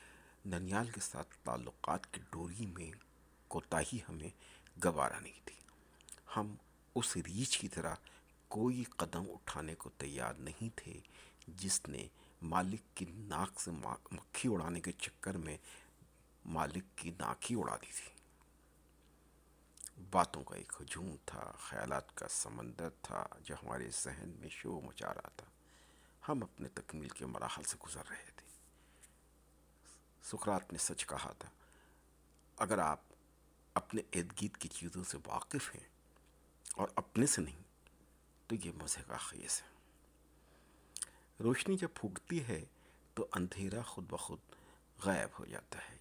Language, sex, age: Urdu, male, 60-79